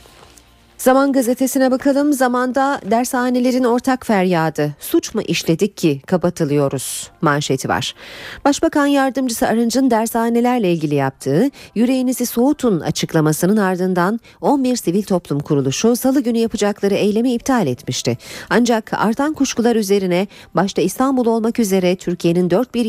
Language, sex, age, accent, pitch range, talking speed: Turkish, female, 40-59, native, 155-250 Hz, 120 wpm